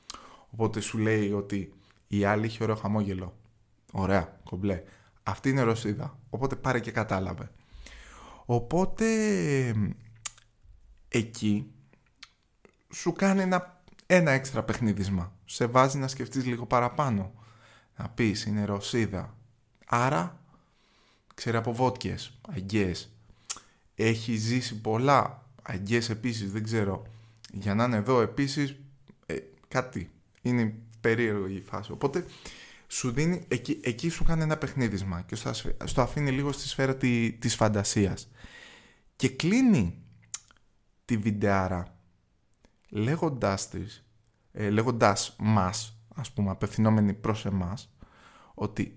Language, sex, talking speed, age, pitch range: Greek, male, 105 wpm, 20-39, 100-125 Hz